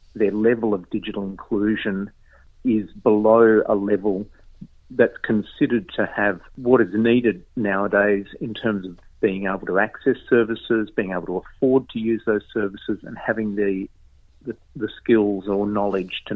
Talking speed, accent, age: 155 wpm, Australian, 50-69